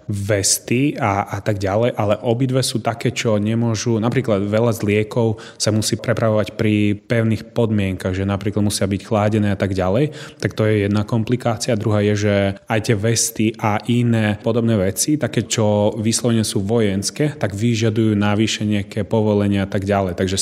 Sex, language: male, Slovak